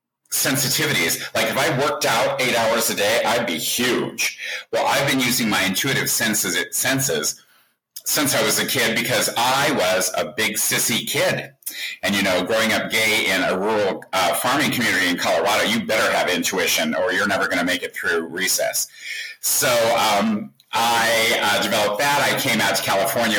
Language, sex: English, male